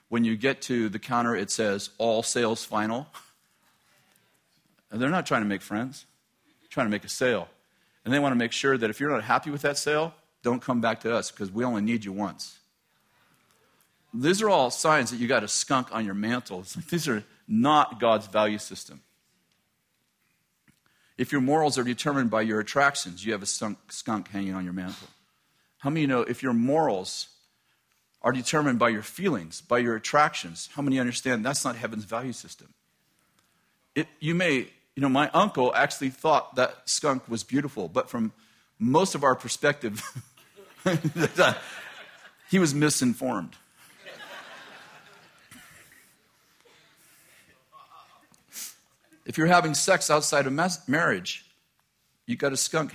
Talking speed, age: 160 wpm, 40-59